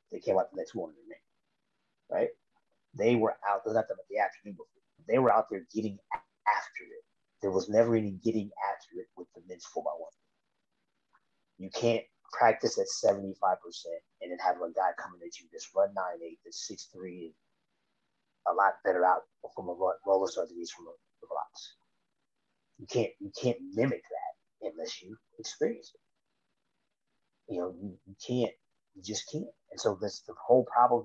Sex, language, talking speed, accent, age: male, English, 180 wpm, American, 30-49